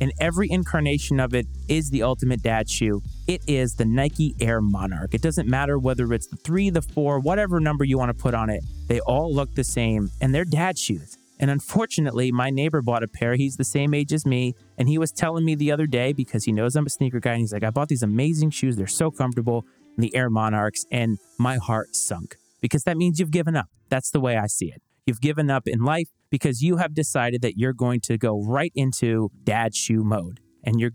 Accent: American